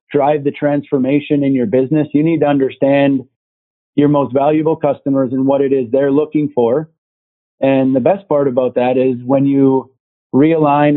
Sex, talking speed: male, 170 wpm